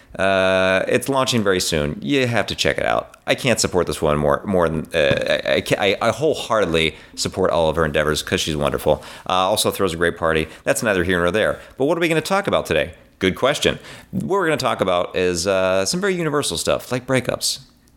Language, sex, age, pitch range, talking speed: English, male, 40-59, 90-145 Hz, 225 wpm